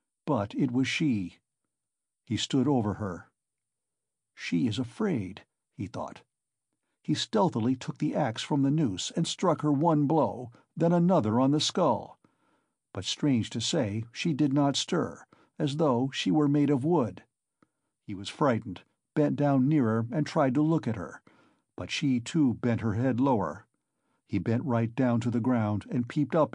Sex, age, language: male, 60-79, English